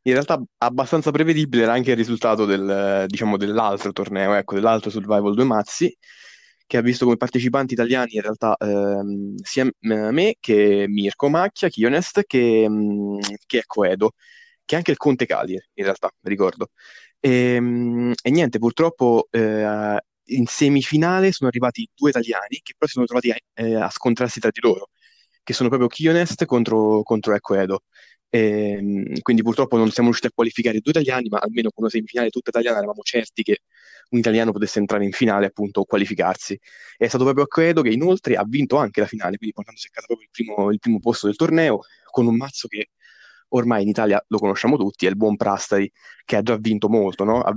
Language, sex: Italian, male